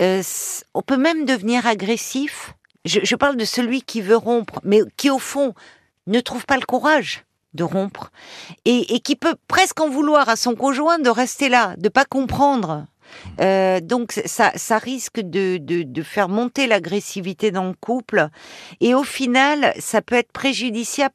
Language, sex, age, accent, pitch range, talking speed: French, female, 50-69, French, 175-245 Hz, 180 wpm